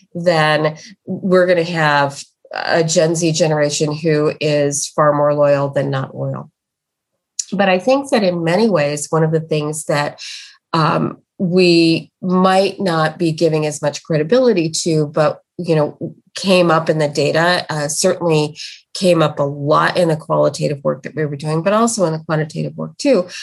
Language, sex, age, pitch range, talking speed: English, female, 30-49, 150-190 Hz, 175 wpm